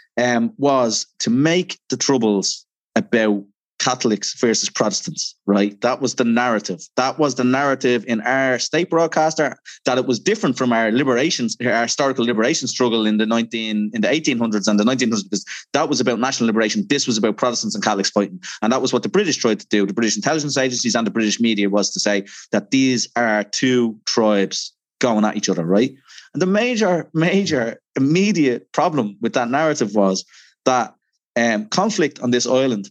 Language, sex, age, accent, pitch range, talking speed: English, male, 30-49, Irish, 105-140 Hz, 180 wpm